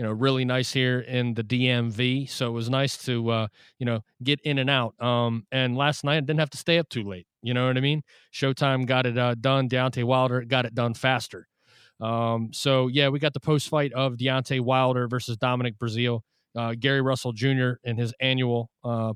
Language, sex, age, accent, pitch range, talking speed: English, male, 30-49, American, 120-135 Hz, 215 wpm